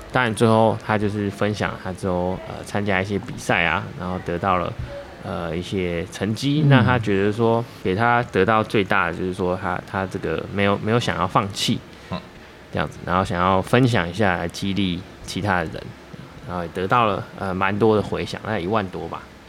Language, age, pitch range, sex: Chinese, 20-39, 90-110 Hz, male